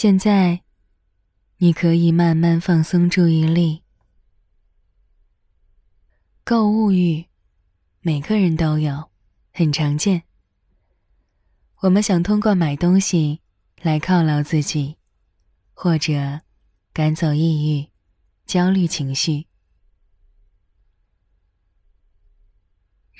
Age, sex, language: 20-39, female, Chinese